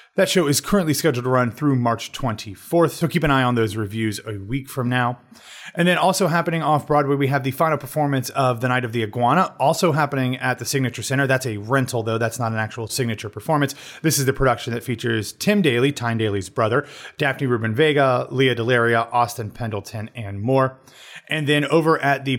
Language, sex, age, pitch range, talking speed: English, male, 30-49, 115-150 Hz, 205 wpm